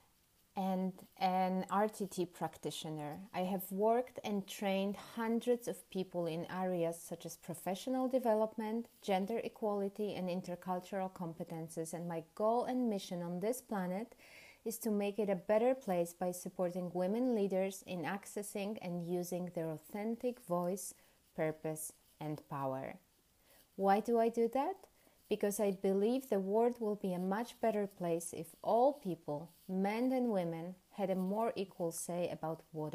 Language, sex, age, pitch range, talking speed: Polish, female, 30-49, 175-220 Hz, 150 wpm